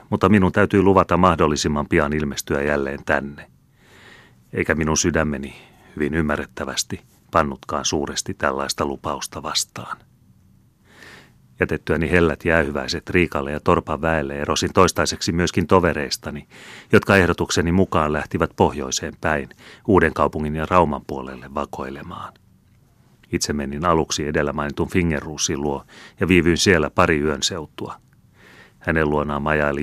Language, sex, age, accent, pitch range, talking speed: Finnish, male, 30-49, native, 75-90 Hz, 115 wpm